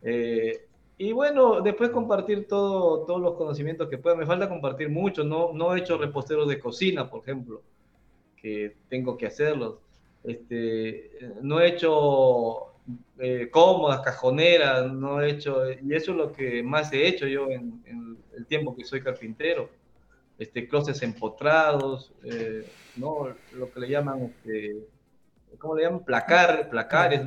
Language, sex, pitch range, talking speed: Spanish, male, 125-175 Hz, 150 wpm